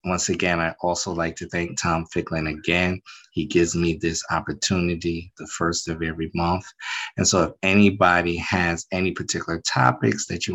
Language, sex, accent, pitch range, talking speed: English, male, American, 85-95 Hz, 170 wpm